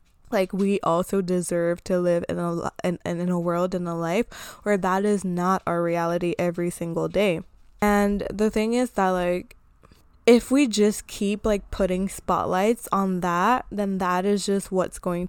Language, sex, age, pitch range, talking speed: English, female, 20-39, 180-210 Hz, 175 wpm